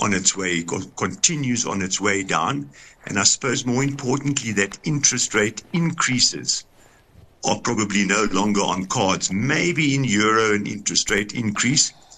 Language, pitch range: English, 105-130 Hz